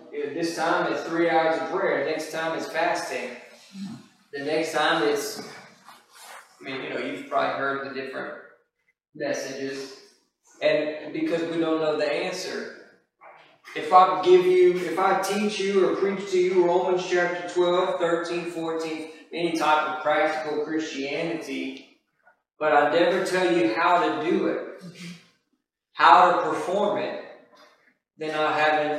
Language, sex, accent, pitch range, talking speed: English, male, American, 150-180 Hz, 145 wpm